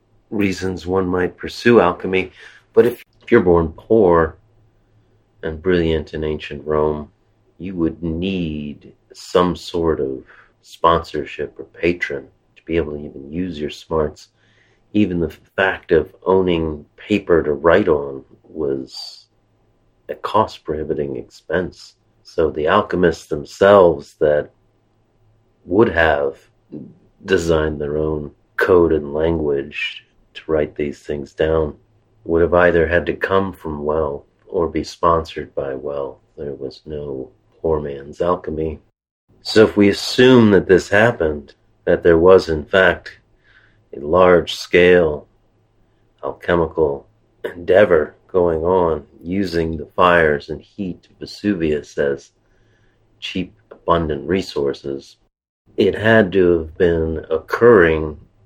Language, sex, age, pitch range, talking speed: English, male, 40-59, 75-105 Hz, 120 wpm